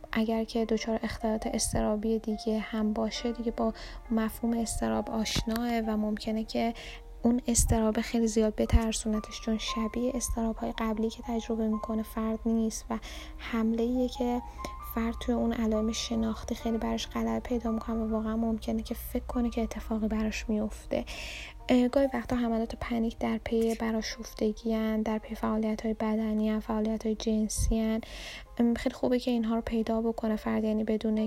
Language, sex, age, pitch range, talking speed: Persian, female, 10-29, 220-235 Hz, 155 wpm